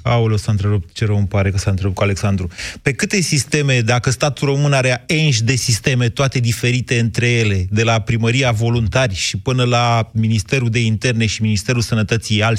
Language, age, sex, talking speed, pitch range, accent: Romanian, 30-49, male, 195 wpm, 110-135 Hz, native